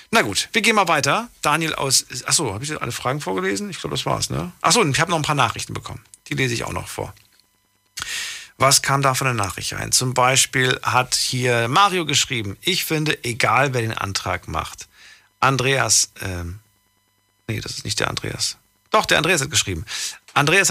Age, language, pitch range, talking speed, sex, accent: 40-59, German, 100-145 Hz, 200 wpm, male, German